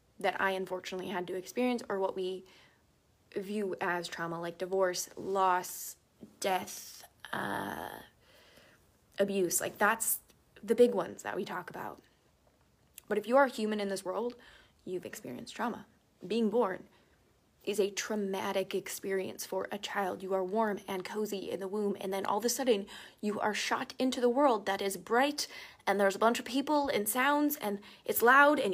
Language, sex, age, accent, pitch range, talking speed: English, female, 20-39, American, 190-215 Hz, 170 wpm